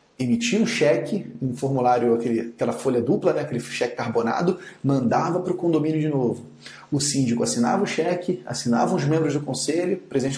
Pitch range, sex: 135-175 Hz, male